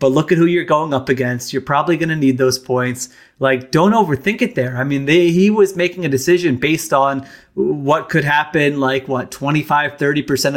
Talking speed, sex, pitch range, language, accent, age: 215 wpm, male, 135-160 Hz, English, American, 30-49